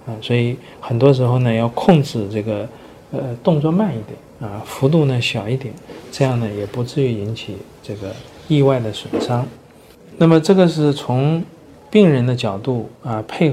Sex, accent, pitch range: male, native, 110-140 Hz